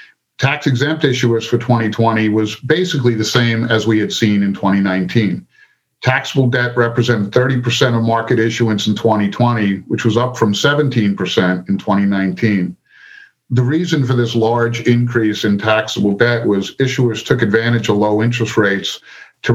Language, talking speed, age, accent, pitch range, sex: English, 145 wpm, 50-69, American, 100-120 Hz, male